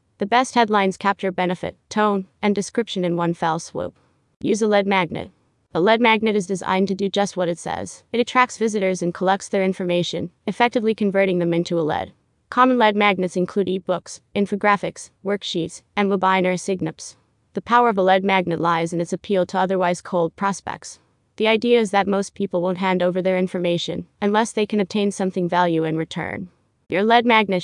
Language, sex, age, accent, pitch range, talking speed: English, female, 30-49, American, 180-210 Hz, 185 wpm